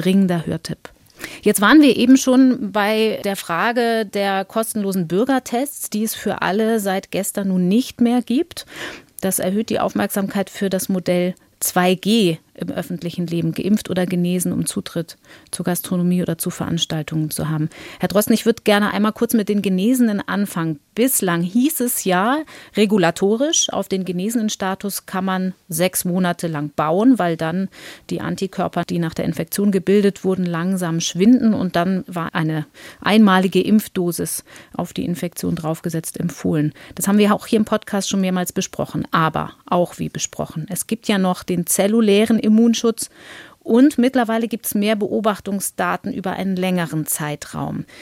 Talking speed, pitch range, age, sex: 155 wpm, 180-225 Hz, 30-49, female